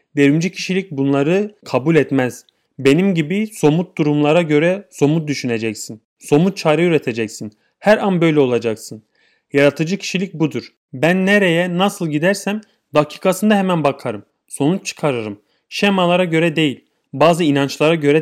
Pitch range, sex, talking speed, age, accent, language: 135-185 Hz, male, 120 wpm, 30-49, Turkish, German